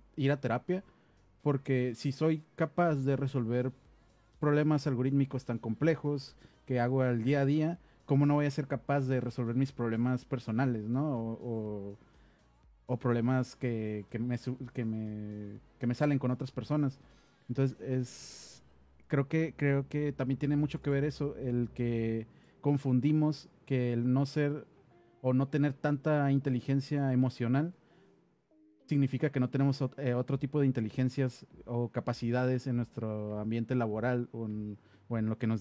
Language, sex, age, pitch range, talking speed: English, male, 30-49, 120-140 Hz, 155 wpm